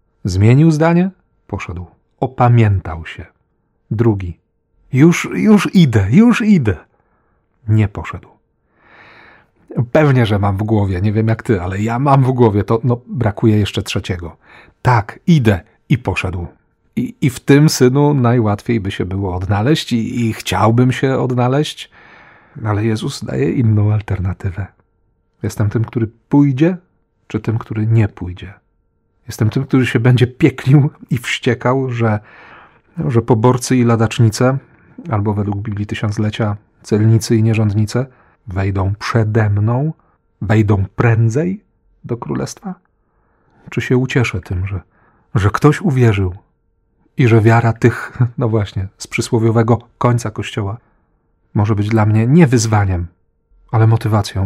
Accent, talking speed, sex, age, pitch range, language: native, 130 wpm, male, 40-59, 100-125 Hz, Polish